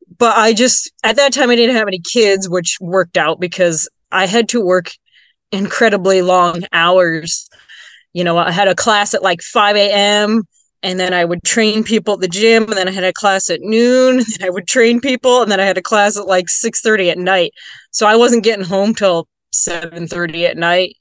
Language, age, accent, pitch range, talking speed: English, 20-39, American, 180-240 Hz, 220 wpm